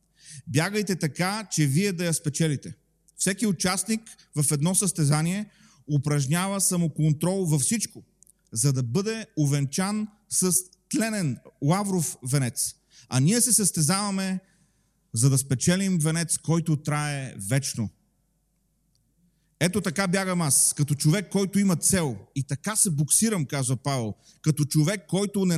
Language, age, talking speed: Bulgarian, 30-49, 125 wpm